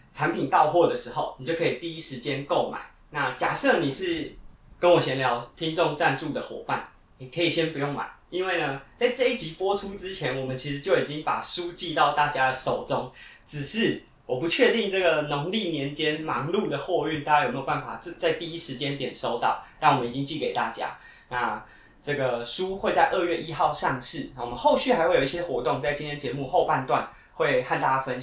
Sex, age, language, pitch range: male, 20-39, Chinese, 140-200 Hz